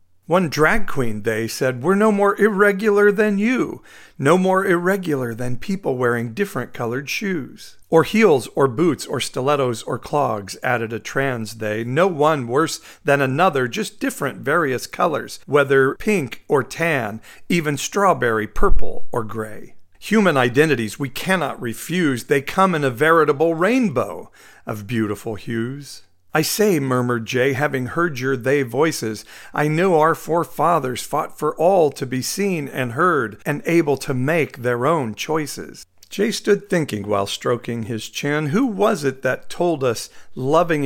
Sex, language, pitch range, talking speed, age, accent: male, English, 125-170 Hz, 155 wpm, 50-69, American